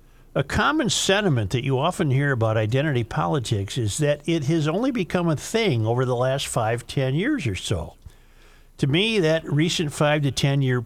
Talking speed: 180 wpm